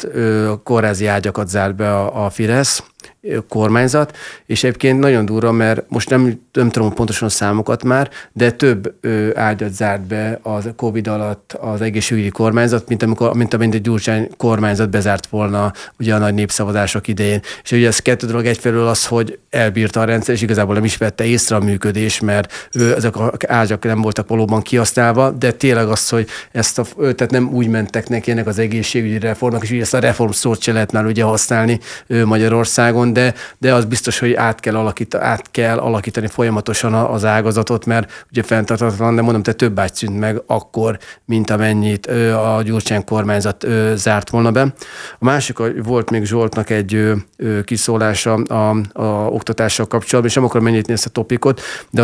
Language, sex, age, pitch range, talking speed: Hungarian, male, 30-49, 110-120 Hz, 175 wpm